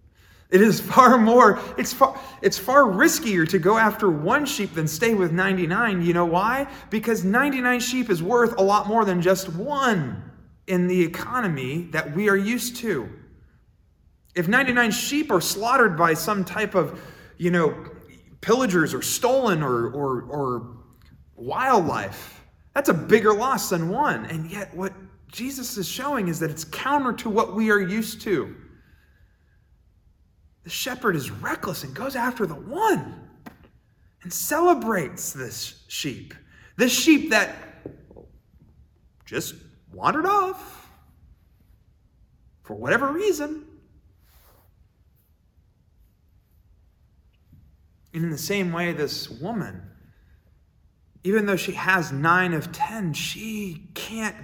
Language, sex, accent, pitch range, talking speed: English, male, American, 145-235 Hz, 130 wpm